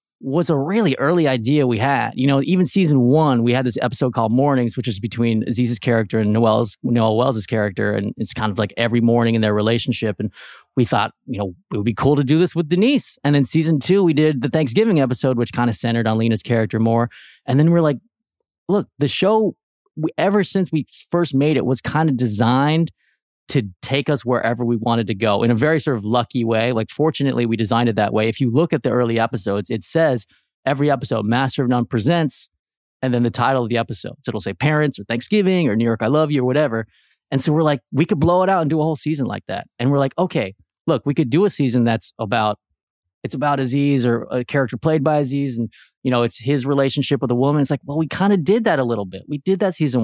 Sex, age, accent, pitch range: male, 20-39, American, 115-155 Hz